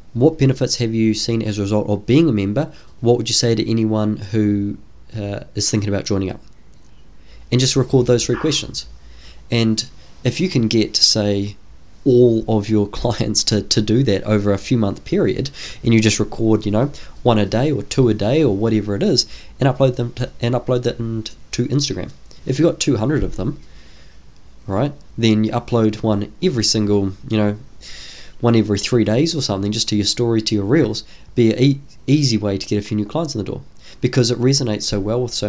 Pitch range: 105-125 Hz